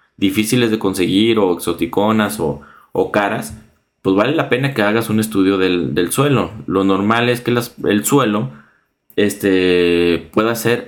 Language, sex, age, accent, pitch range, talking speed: Spanish, male, 30-49, Mexican, 90-120 Hz, 150 wpm